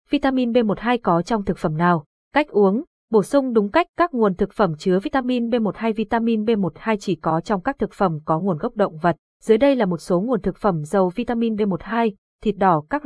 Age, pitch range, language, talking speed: 20-39, 185-230 Hz, Vietnamese, 215 wpm